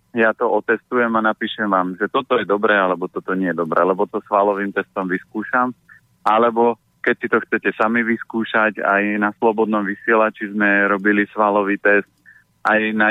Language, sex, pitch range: Slovak, male, 100-115 Hz